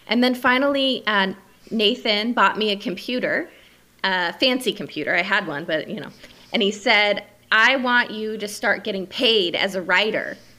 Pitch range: 185-225 Hz